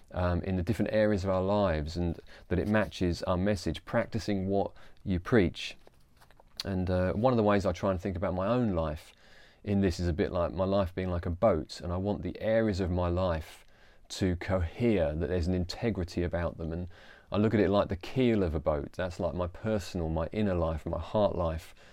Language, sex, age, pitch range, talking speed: English, male, 30-49, 90-105 Hz, 220 wpm